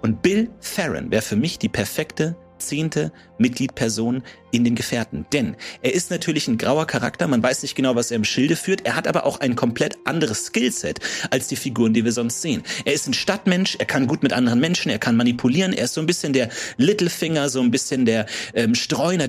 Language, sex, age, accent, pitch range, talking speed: German, male, 40-59, German, 115-160 Hz, 220 wpm